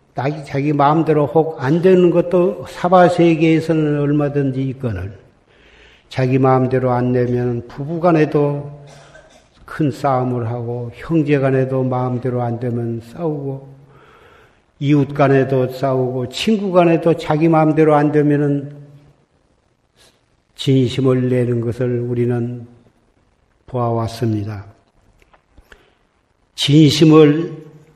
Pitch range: 125-150 Hz